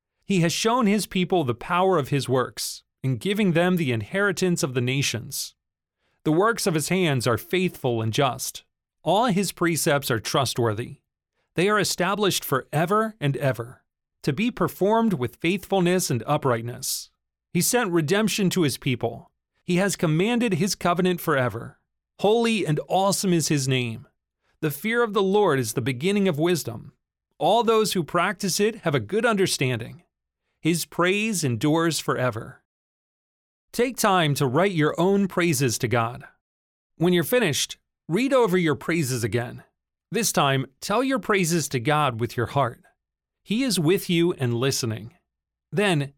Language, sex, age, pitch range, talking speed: English, male, 40-59, 130-195 Hz, 155 wpm